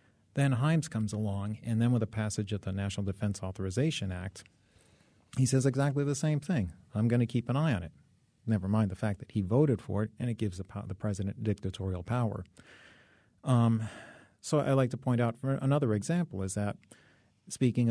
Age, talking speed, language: 40-59, 195 wpm, English